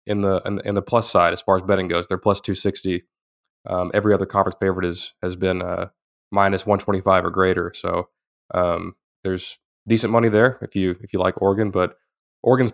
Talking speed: 205 wpm